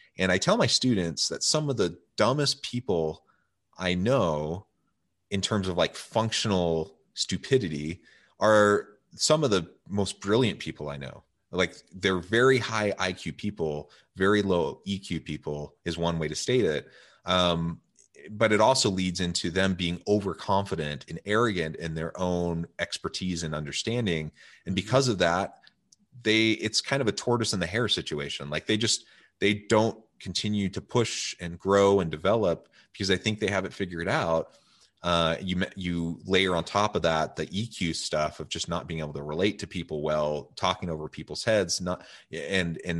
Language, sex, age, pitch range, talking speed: English, male, 30-49, 80-105 Hz, 170 wpm